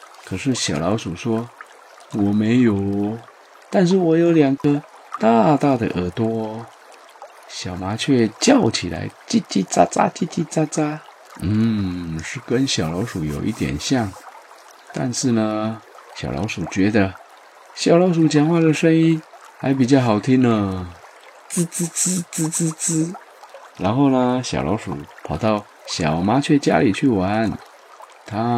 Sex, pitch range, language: male, 100-135 Hz, Chinese